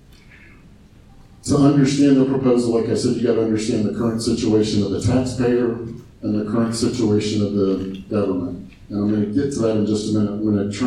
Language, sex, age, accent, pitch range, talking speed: English, male, 50-69, American, 100-115 Hz, 215 wpm